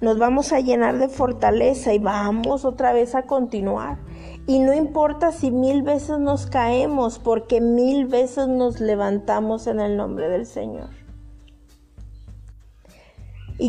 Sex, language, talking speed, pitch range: female, Spanish, 135 wpm, 210-260 Hz